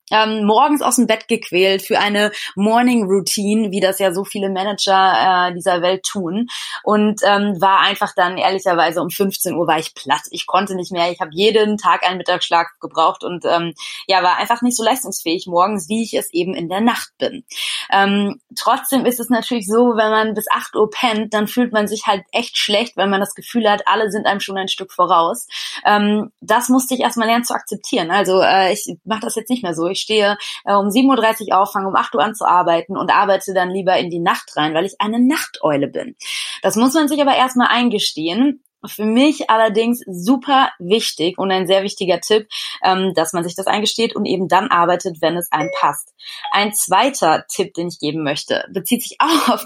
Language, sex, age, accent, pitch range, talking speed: German, female, 20-39, German, 185-225 Hz, 205 wpm